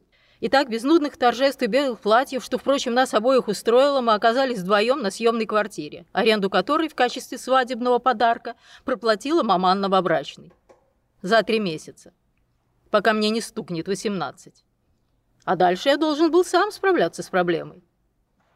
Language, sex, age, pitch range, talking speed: Russian, female, 30-49, 210-280 Hz, 145 wpm